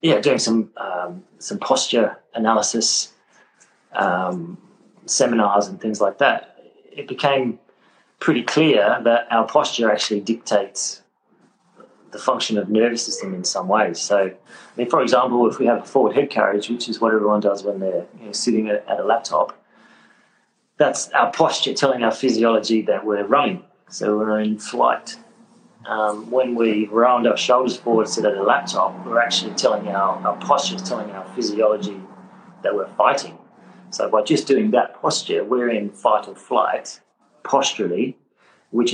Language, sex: English, male